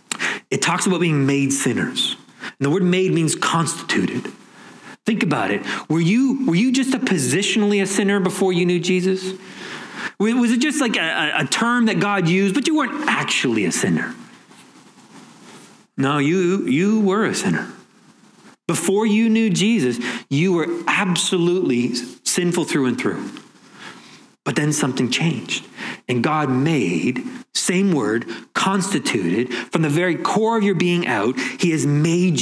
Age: 40-59